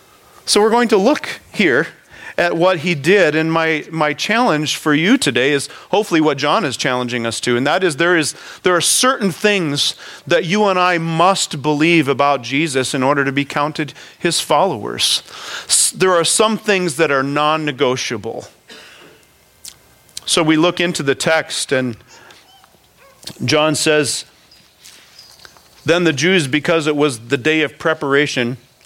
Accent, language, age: American, English, 40-59